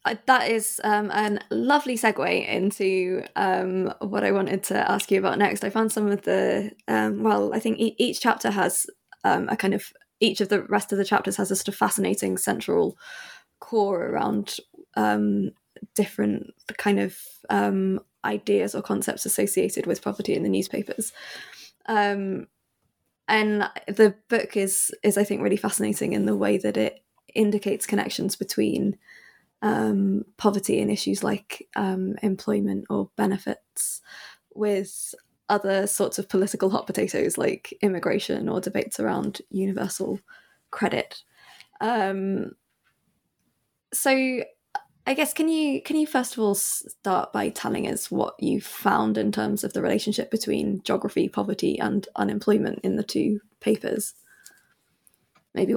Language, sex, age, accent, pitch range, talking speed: English, female, 20-39, British, 190-220 Hz, 145 wpm